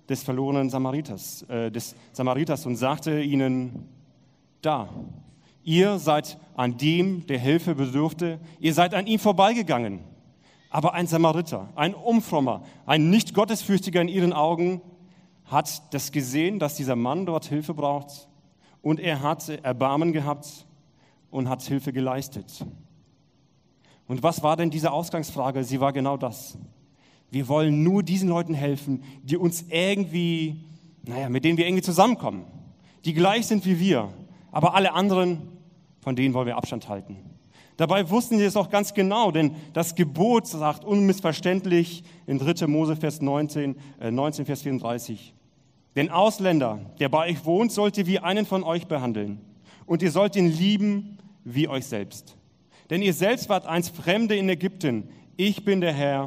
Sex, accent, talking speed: male, German, 155 wpm